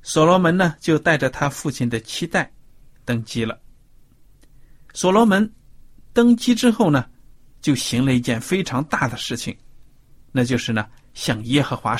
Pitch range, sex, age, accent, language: 120-150 Hz, male, 50-69, native, Chinese